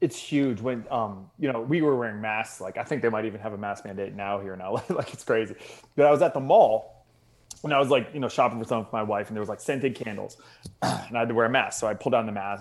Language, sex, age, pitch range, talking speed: English, male, 20-39, 115-175 Hz, 305 wpm